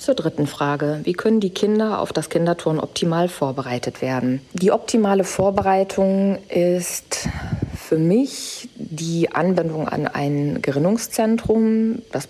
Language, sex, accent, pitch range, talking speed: German, female, German, 145-175 Hz, 120 wpm